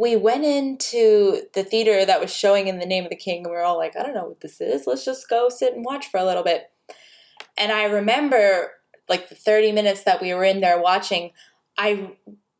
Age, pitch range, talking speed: 20-39, 190-245 Hz, 230 wpm